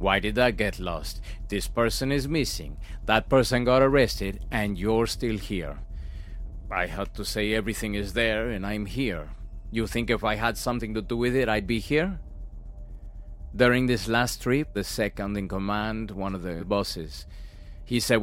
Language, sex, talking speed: English, male, 180 wpm